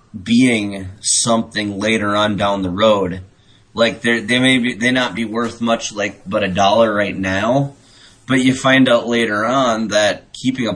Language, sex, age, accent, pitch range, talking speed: English, male, 30-49, American, 100-120 Hz, 175 wpm